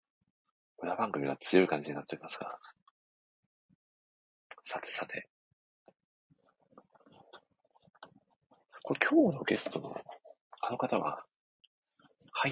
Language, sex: Japanese, male